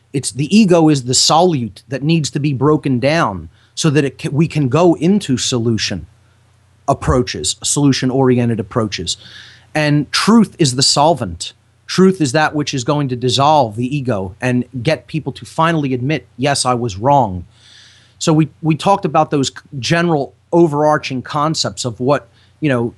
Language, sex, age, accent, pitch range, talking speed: English, male, 30-49, American, 120-150 Hz, 160 wpm